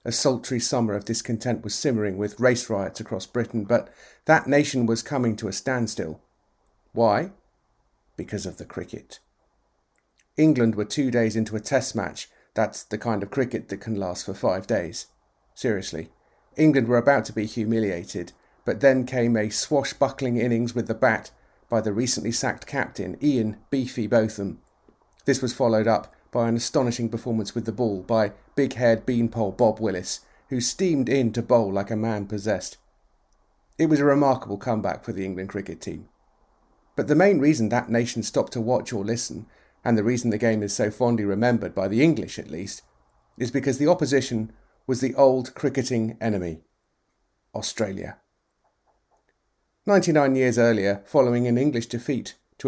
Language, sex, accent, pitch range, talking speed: English, male, British, 110-130 Hz, 165 wpm